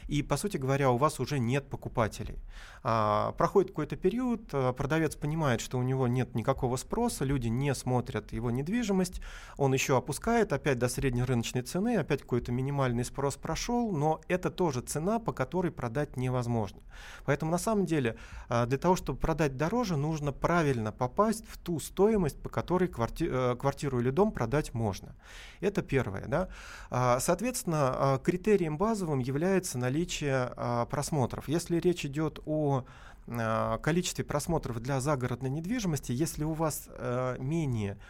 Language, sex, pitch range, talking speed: Russian, male, 125-165 Hz, 140 wpm